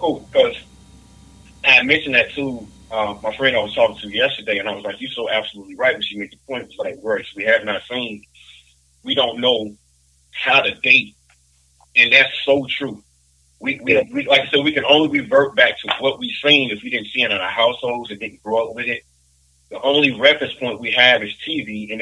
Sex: male